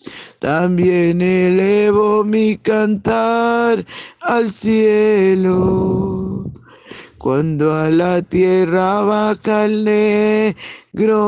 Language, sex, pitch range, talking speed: Spanish, male, 185-235 Hz, 70 wpm